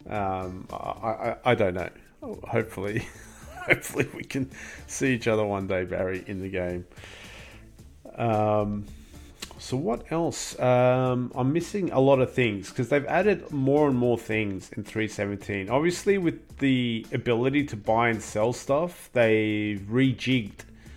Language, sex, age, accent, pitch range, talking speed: English, male, 40-59, Australian, 100-135 Hz, 145 wpm